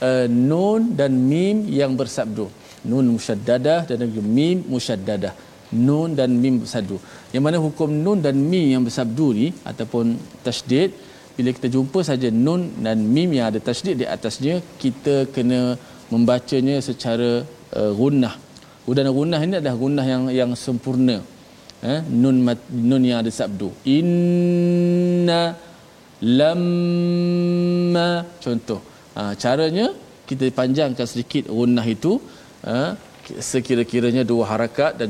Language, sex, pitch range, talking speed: Malayalam, male, 115-155 Hz, 130 wpm